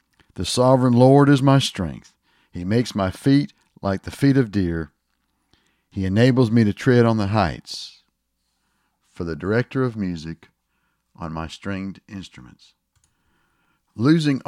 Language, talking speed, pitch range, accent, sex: English, 135 wpm, 95-125 Hz, American, male